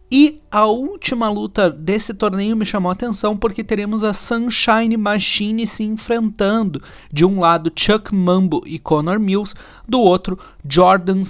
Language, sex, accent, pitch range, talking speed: Portuguese, male, Brazilian, 165-205 Hz, 150 wpm